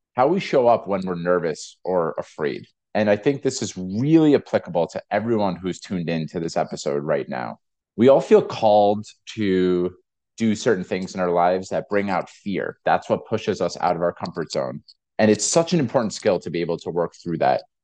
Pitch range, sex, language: 95-120 Hz, male, English